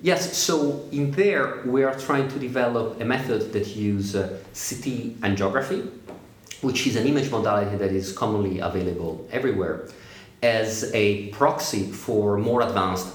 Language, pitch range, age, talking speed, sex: English, 95-120 Hz, 40-59, 145 wpm, male